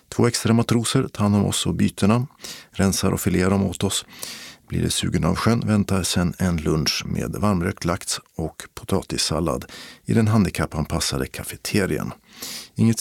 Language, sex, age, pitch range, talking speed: Swedish, male, 50-69, 90-115 Hz, 155 wpm